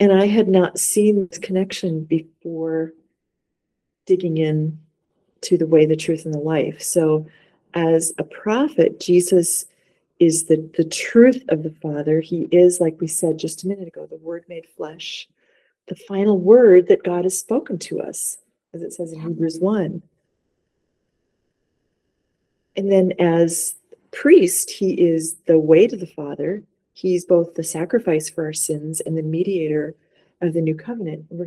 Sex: female